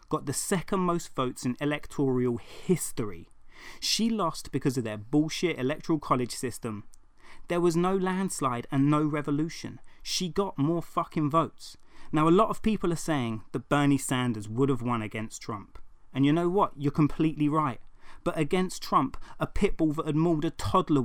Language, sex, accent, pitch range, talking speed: English, male, British, 130-180 Hz, 175 wpm